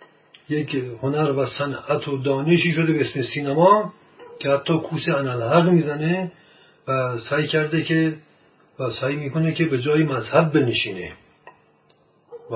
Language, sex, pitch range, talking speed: Persian, male, 130-160 Hz, 135 wpm